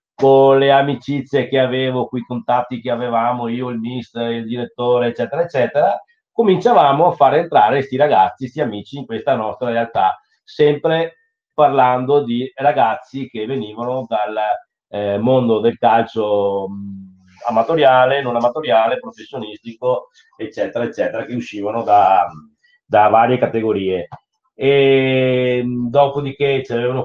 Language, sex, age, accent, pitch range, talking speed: Italian, male, 30-49, native, 110-135 Hz, 120 wpm